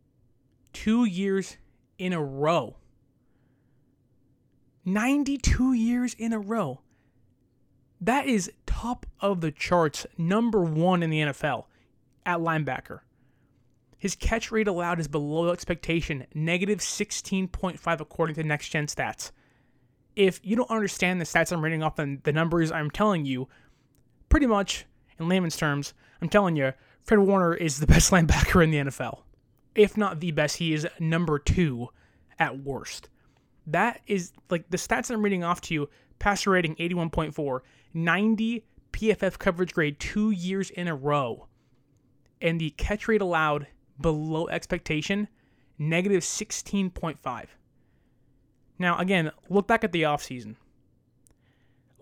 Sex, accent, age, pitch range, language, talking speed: male, American, 20-39, 135-185 Hz, English, 135 wpm